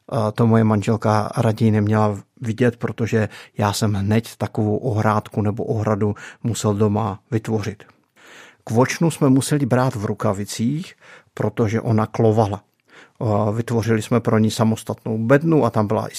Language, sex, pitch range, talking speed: Czech, male, 110-130 Hz, 135 wpm